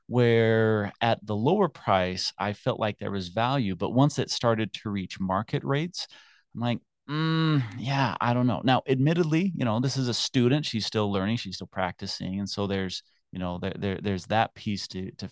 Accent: American